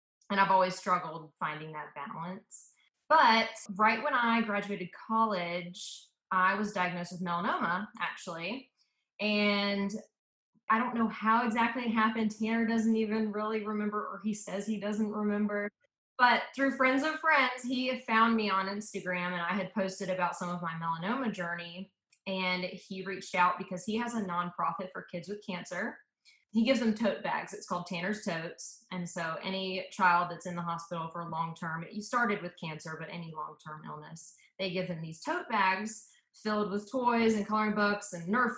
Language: English